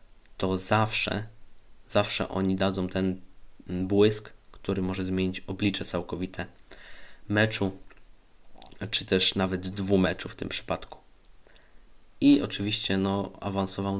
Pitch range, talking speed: 95-105 Hz, 105 wpm